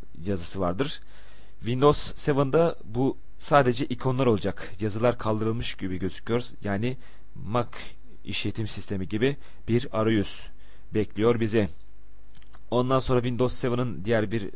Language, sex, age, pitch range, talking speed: Turkish, male, 40-59, 95-120 Hz, 110 wpm